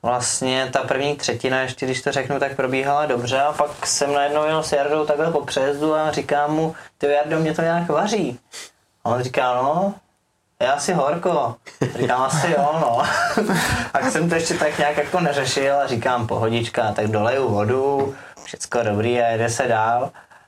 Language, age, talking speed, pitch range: Czech, 20-39, 180 wpm, 120-145 Hz